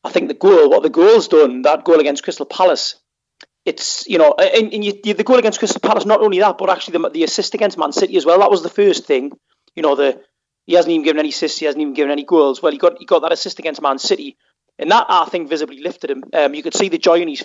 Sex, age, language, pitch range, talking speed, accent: male, 30-49, English, 155-245 Hz, 285 wpm, British